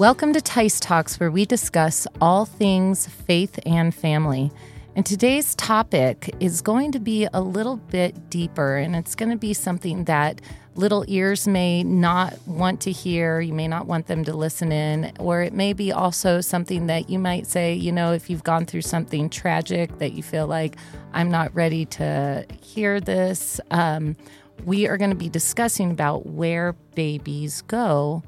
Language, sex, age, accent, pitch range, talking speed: English, female, 30-49, American, 150-180 Hz, 180 wpm